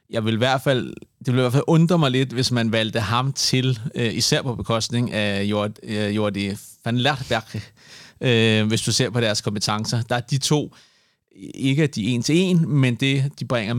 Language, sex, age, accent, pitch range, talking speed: Danish, male, 30-49, native, 115-135 Hz, 200 wpm